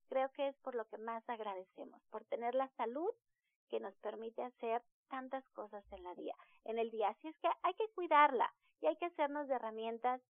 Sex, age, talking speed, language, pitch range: female, 40-59, 210 wpm, Spanish, 215-275 Hz